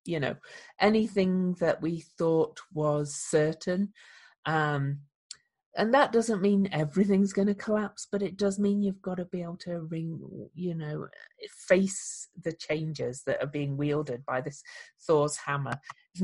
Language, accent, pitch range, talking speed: English, British, 140-195 Hz, 155 wpm